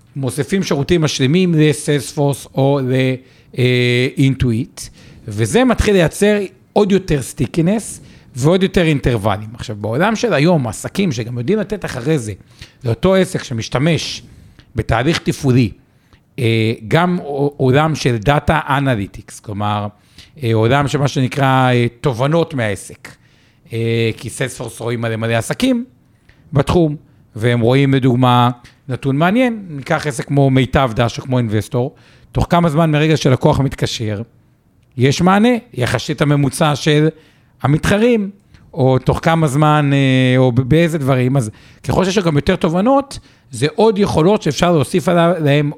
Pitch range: 125-165 Hz